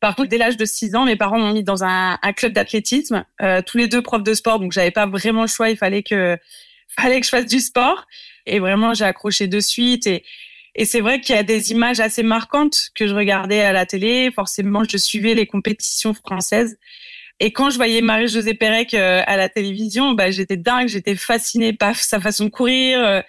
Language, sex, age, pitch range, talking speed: French, female, 20-39, 205-240 Hz, 220 wpm